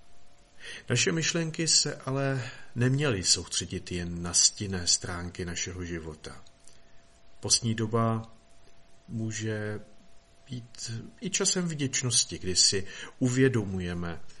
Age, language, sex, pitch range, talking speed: 50-69, Czech, male, 95-120 Hz, 90 wpm